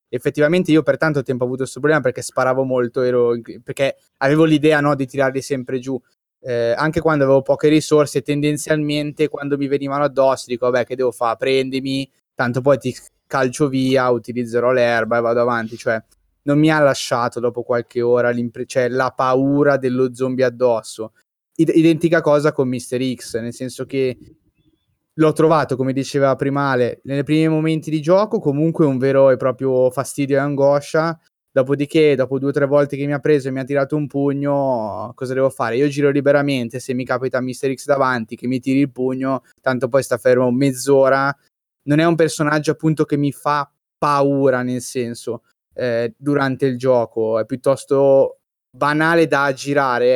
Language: Italian